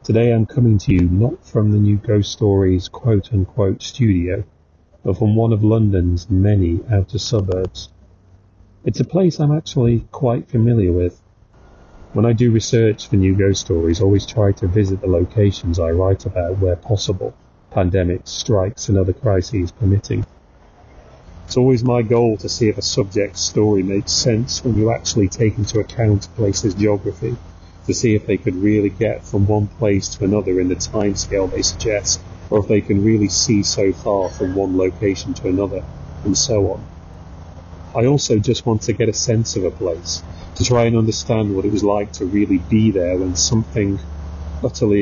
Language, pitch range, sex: English, 90-110 Hz, male